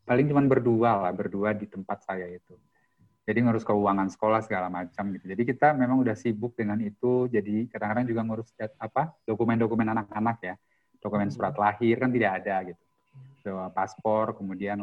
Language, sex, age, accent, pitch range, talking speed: Indonesian, male, 30-49, native, 100-125 Hz, 170 wpm